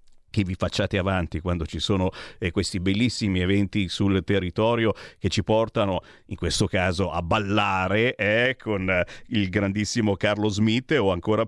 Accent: native